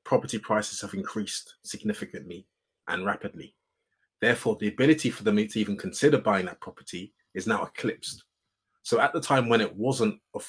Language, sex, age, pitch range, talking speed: English, male, 20-39, 100-125 Hz, 165 wpm